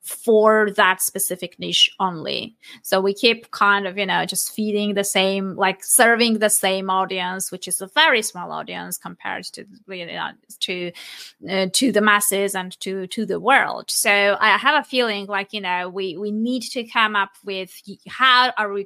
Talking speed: 190 wpm